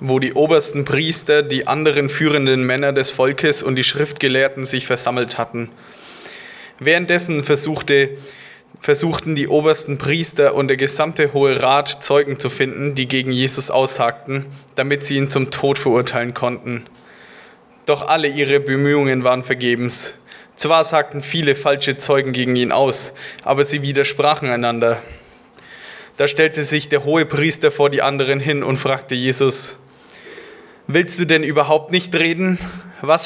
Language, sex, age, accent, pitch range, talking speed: German, male, 20-39, German, 135-155 Hz, 140 wpm